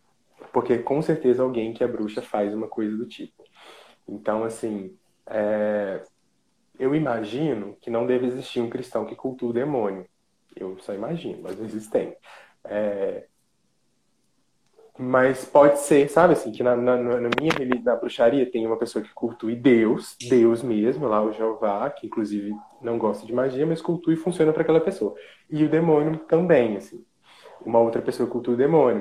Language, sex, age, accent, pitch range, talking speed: Portuguese, male, 20-39, Brazilian, 115-145 Hz, 170 wpm